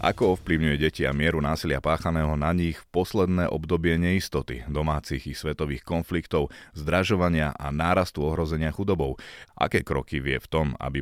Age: 30-49